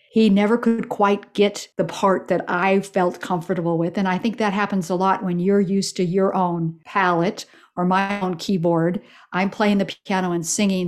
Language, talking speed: English, 200 wpm